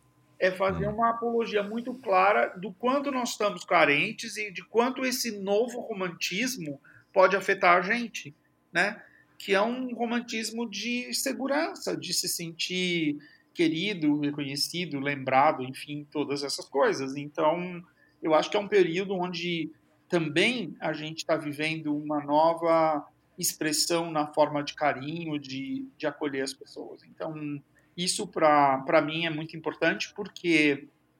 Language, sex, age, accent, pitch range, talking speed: Portuguese, male, 50-69, Brazilian, 145-180 Hz, 135 wpm